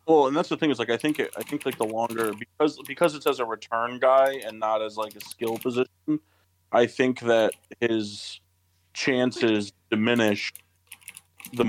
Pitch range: 90-125 Hz